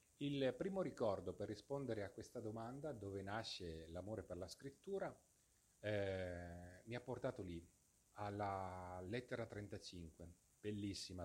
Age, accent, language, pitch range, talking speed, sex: 40-59, native, Italian, 90-115 Hz, 125 wpm, male